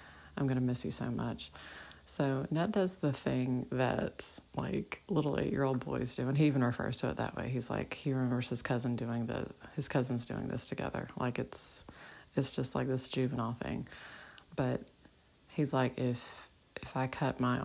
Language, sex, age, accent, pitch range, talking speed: English, female, 30-49, American, 120-135 Hz, 185 wpm